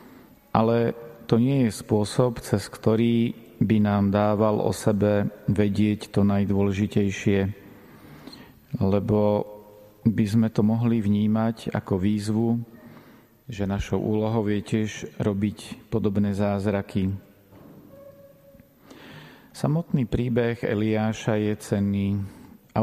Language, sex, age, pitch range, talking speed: Slovak, male, 40-59, 105-115 Hz, 95 wpm